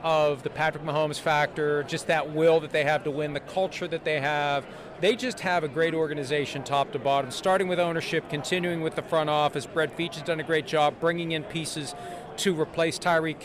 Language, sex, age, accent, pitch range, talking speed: English, male, 40-59, American, 150-185 Hz, 215 wpm